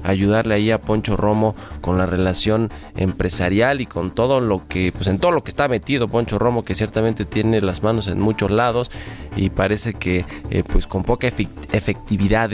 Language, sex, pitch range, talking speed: Spanish, male, 95-120 Hz, 185 wpm